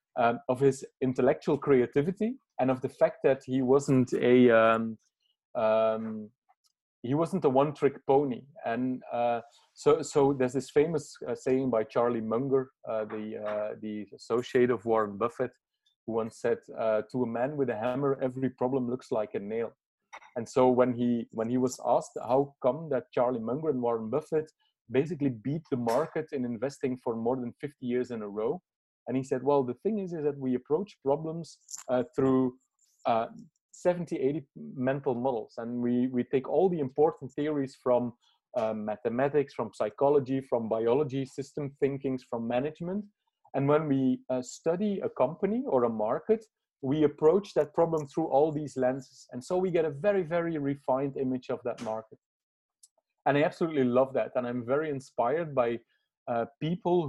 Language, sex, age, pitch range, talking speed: English, male, 30-49, 120-150 Hz, 175 wpm